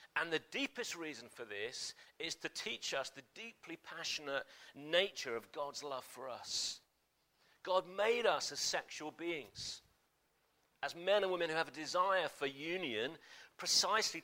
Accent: British